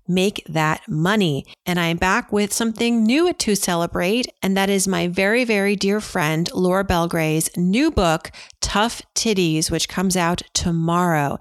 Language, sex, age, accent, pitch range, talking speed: English, female, 40-59, American, 180-220 Hz, 155 wpm